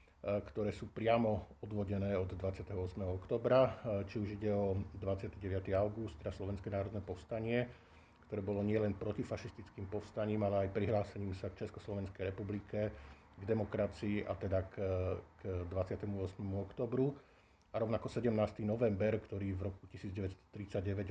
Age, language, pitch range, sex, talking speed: 50-69, Slovak, 95-110 Hz, male, 125 wpm